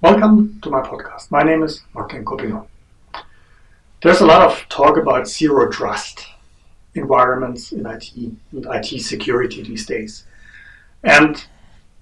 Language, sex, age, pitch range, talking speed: English, male, 60-79, 115-165 Hz, 130 wpm